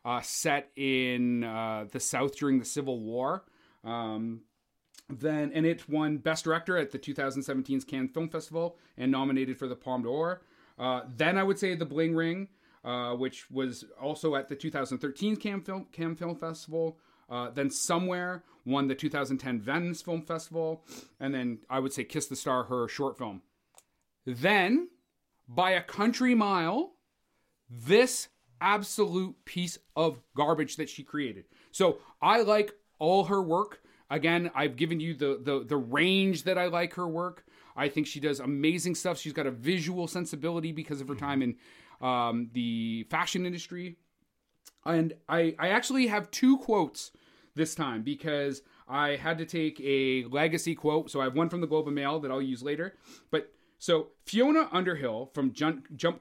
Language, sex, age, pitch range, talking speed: English, male, 30-49, 135-170 Hz, 170 wpm